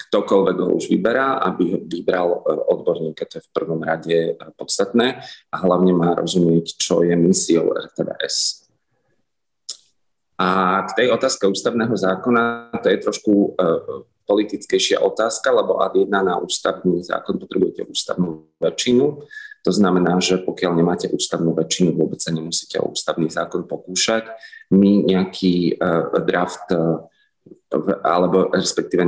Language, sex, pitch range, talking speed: Slovak, male, 85-95 Hz, 130 wpm